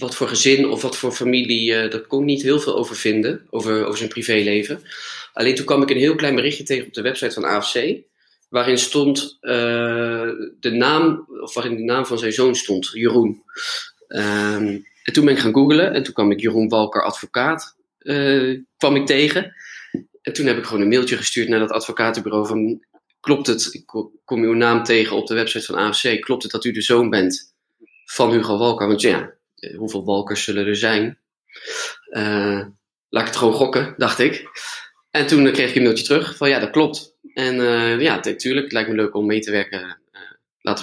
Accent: Dutch